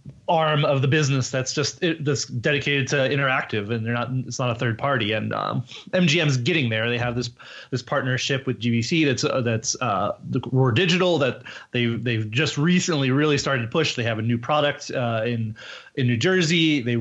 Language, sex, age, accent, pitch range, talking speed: English, male, 30-49, American, 120-145 Hz, 200 wpm